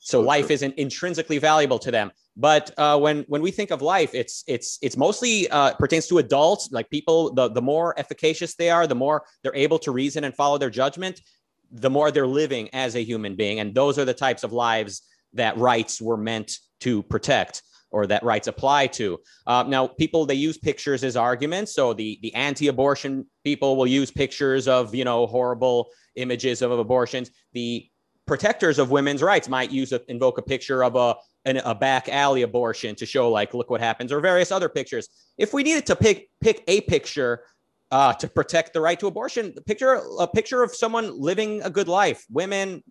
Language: English